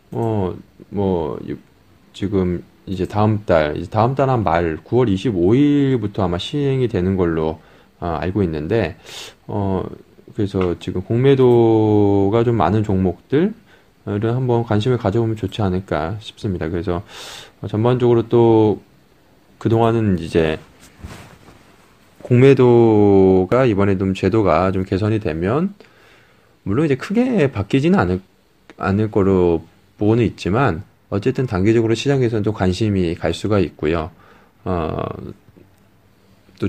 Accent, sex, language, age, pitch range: native, male, Korean, 20-39, 95-120 Hz